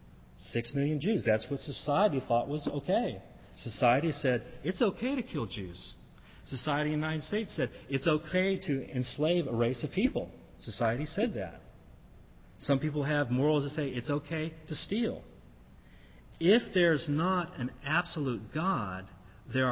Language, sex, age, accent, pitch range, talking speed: English, male, 40-59, American, 110-155 Hz, 150 wpm